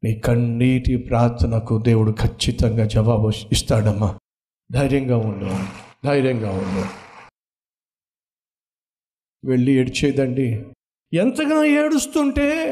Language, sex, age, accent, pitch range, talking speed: Telugu, male, 60-79, native, 110-180 Hz, 65 wpm